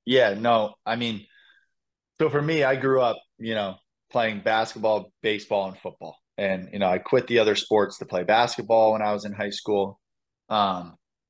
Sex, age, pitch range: male, 20-39, 105-120 Hz